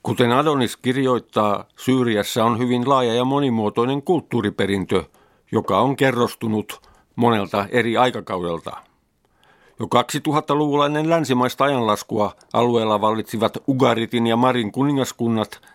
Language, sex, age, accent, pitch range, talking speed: Finnish, male, 50-69, native, 110-130 Hz, 100 wpm